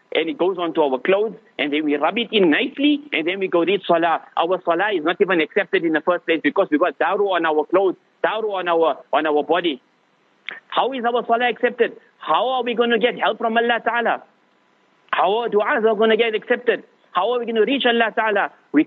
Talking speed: 240 wpm